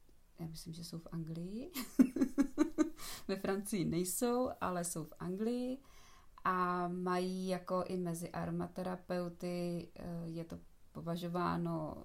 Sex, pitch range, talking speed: female, 160-180 Hz, 110 wpm